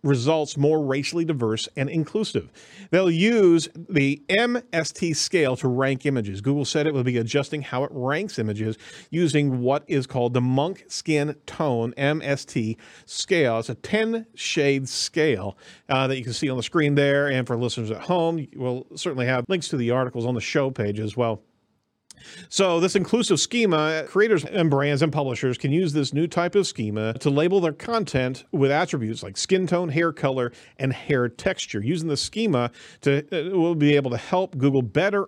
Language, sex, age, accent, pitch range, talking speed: English, male, 40-59, American, 125-165 Hz, 180 wpm